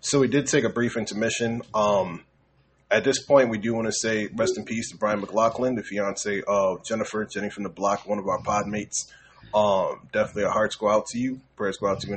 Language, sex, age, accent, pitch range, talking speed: English, male, 20-39, American, 105-125 Hz, 235 wpm